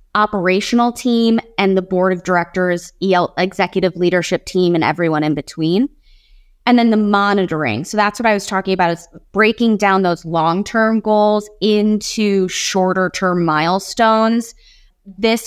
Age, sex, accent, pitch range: 20-39, female, American, 180-215 Hz